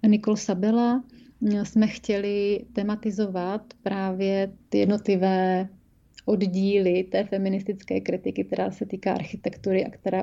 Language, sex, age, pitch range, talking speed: Slovak, female, 30-49, 190-215 Hz, 105 wpm